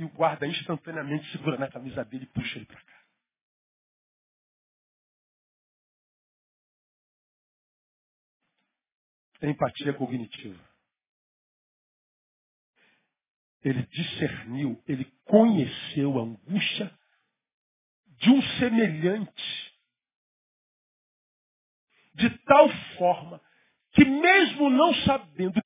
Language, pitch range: Portuguese, 135-200 Hz